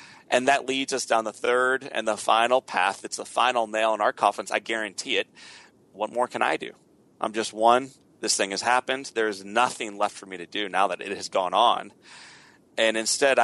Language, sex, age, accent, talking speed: English, male, 30-49, American, 215 wpm